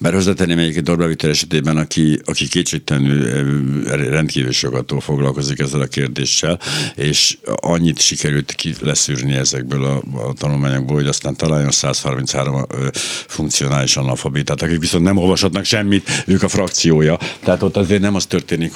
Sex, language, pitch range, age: male, Hungarian, 70-95 Hz, 60-79